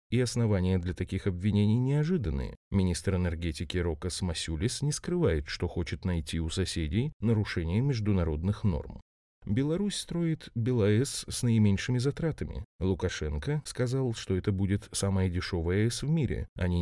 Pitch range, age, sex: 90-120 Hz, 30-49, male